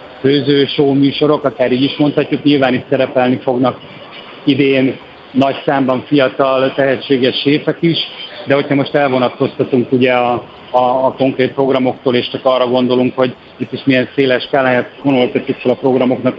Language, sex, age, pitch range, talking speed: Hungarian, male, 60-79, 125-140 Hz, 155 wpm